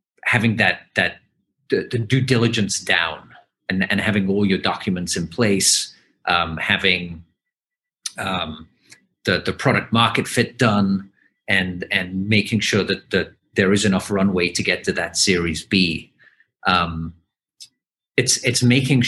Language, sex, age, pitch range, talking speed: English, male, 40-59, 90-110 Hz, 140 wpm